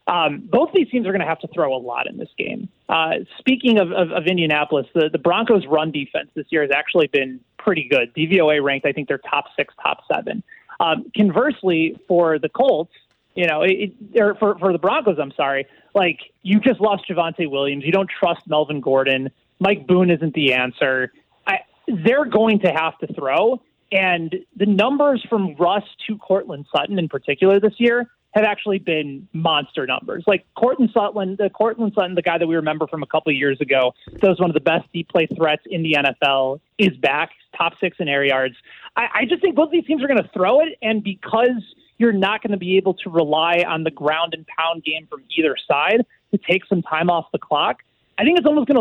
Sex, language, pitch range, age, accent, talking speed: male, English, 160-220 Hz, 30-49, American, 215 wpm